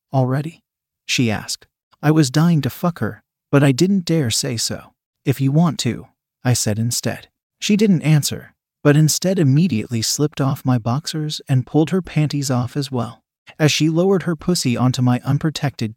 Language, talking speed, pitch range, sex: English, 175 wpm, 120-155 Hz, male